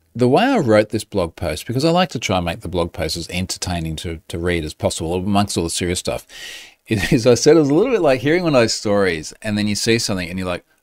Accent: Australian